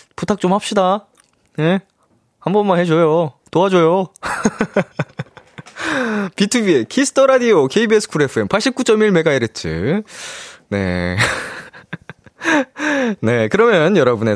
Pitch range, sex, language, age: 140-220 Hz, male, Korean, 20-39